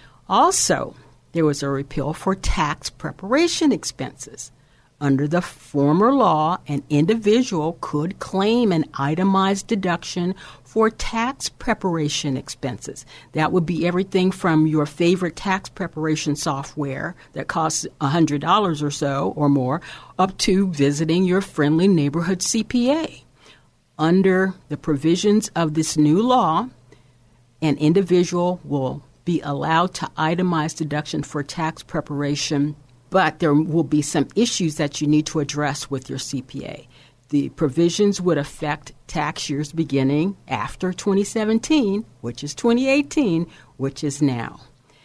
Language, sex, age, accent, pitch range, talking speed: English, female, 50-69, American, 145-190 Hz, 125 wpm